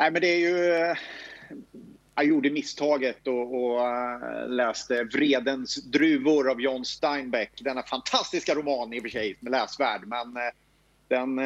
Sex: male